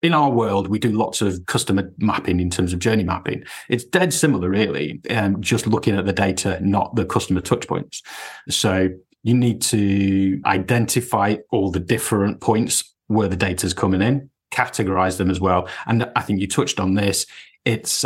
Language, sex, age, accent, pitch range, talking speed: English, male, 30-49, British, 95-115 Hz, 185 wpm